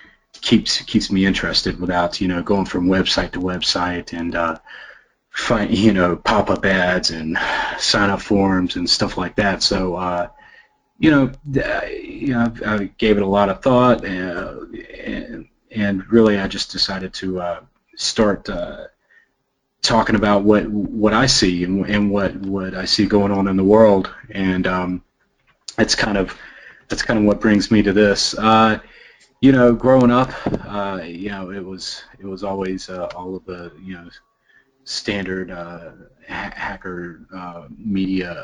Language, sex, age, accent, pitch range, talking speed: English, male, 30-49, American, 90-105 Hz, 165 wpm